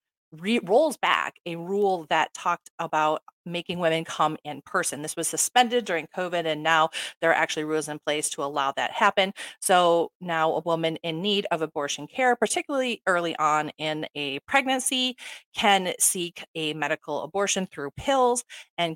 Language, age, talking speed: English, 30-49, 170 wpm